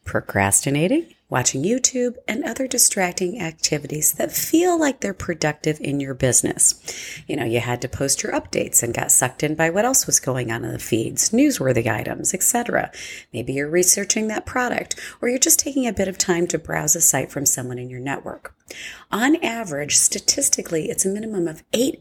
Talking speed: 190 wpm